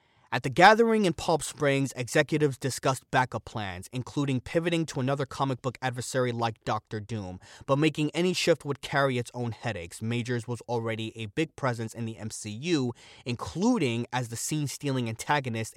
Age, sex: 20-39, male